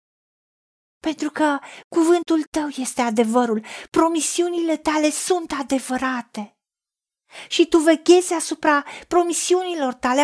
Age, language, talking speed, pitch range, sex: 40-59, Romanian, 95 wpm, 265-340 Hz, female